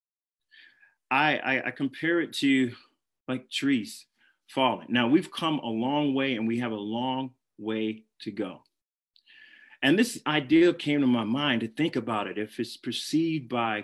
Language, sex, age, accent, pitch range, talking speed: English, male, 30-49, American, 120-160 Hz, 165 wpm